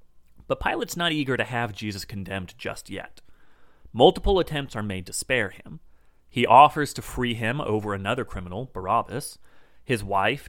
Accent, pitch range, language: American, 100-135 Hz, English